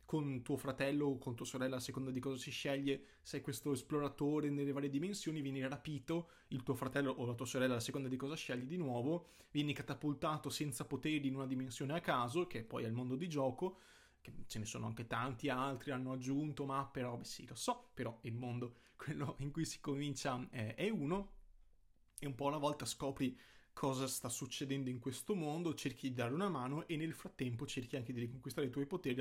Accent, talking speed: native, 210 wpm